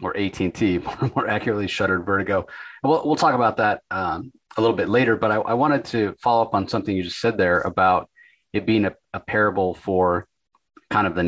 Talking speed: 205 wpm